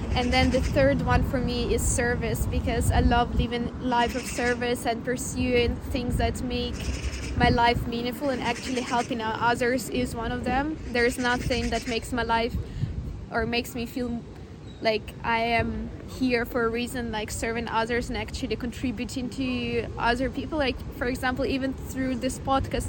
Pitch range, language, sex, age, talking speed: 235-255 Hz, English, female, 20-39, 170 wpm